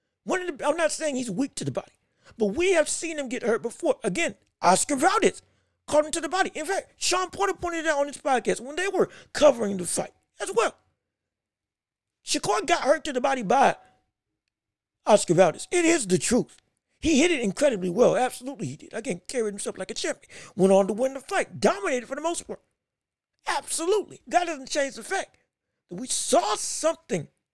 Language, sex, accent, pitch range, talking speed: English, male, American, 235-325 Hz, 195 wpm